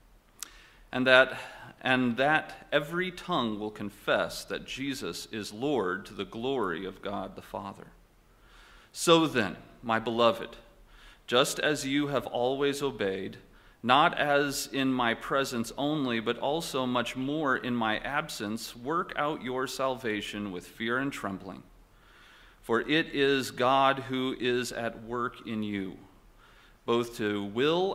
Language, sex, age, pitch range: English, male, 40-59, 110-145 Hz